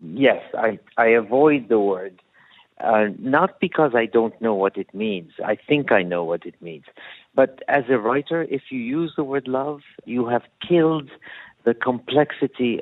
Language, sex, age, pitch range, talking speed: Hebrew, male, 50-69, 115-145 Hz, 180 wpm